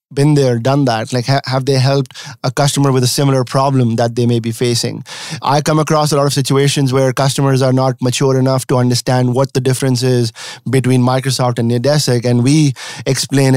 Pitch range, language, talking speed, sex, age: 125-140 Hz, English, 200 wpm, male, 30-49